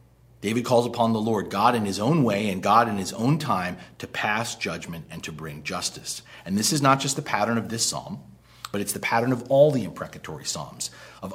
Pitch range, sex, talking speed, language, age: 115-140 Hz, male, 225 wpm, English, 40-59